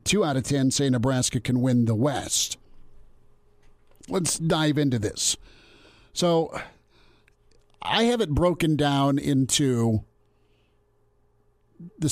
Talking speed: 110 wpm